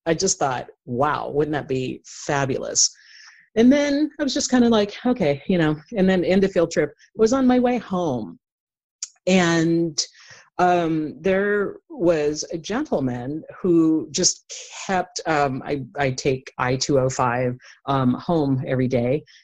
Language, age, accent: English, 30-49, American